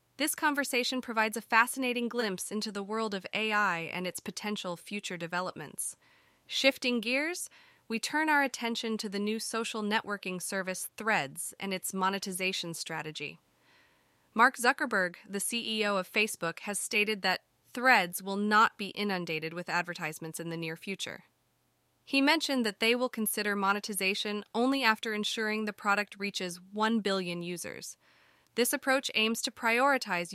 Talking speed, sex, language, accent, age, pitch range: 145 wpm, female, English, American, 20-39, 180-225 Hz